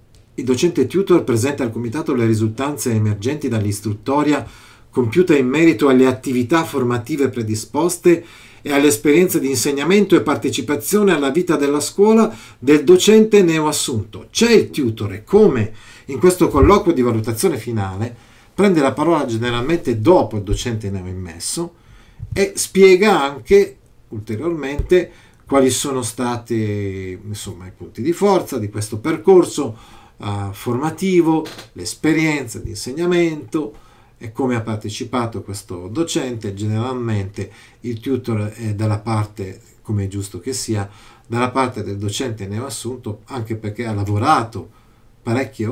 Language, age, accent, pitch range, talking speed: Italian, 40-59, native, 110-155 Hz, 130 wpm